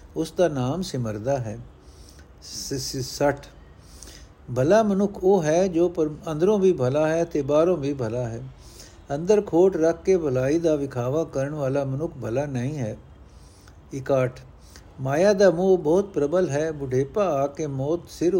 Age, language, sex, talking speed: 60-79, Punjabi, male, 145 wpm